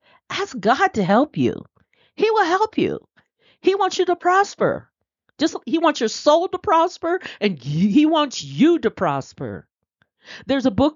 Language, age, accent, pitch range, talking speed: English, 40-59, American, 170-255 Hz, 165 wpm